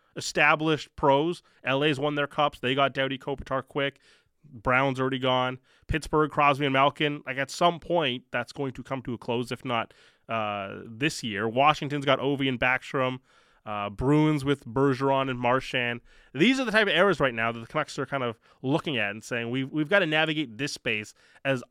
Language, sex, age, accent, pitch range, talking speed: English, male, 20-39, American, 120-150 Hz, 195 wpm